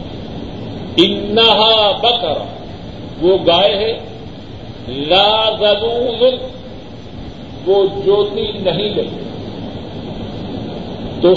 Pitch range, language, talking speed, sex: 175-230 Hz, Urdu, 60 wpm, male